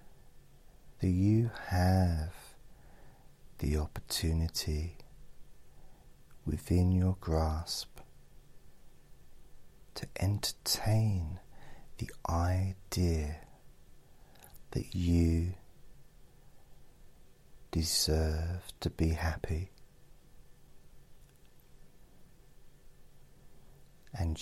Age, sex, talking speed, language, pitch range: 40-59, male, 45 wpm, English, 80-95 Hz